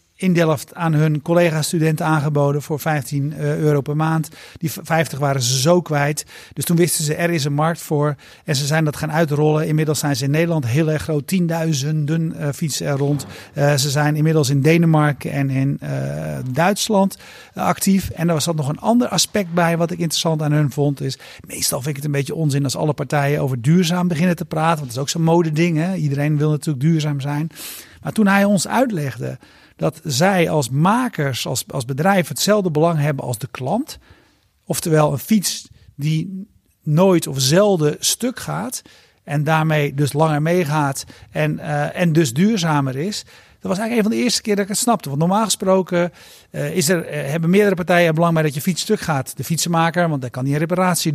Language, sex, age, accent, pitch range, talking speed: Dutch, male, 50-69, Dutch, 145-175 Hz, 205 wpm